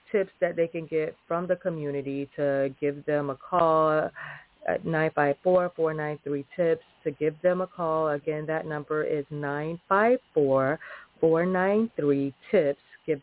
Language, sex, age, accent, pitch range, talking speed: English, female, 30-49, American, 150-190 Hz, 120 wpm